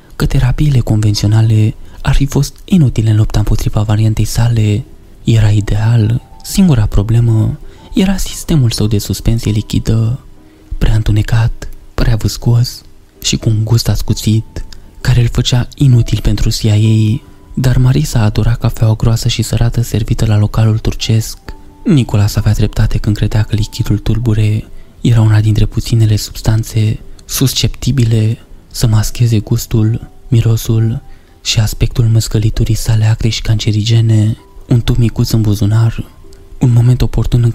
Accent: native